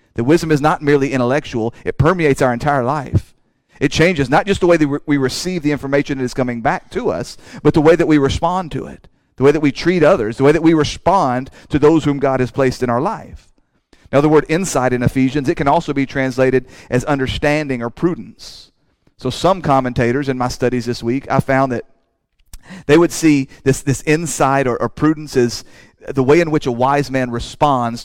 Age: 40-59